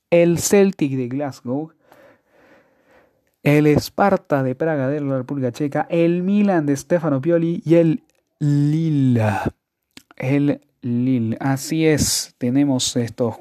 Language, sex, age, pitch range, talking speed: Spanish, male, 30-49, 125-160 Hz, 115 wpm